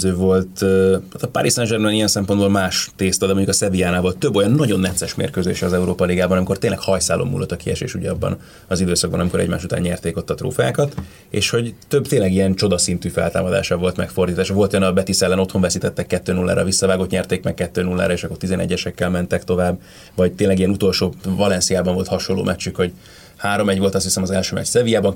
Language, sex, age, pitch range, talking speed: Hungarian, male, 30-49, 90-105 Hz, 185 wpm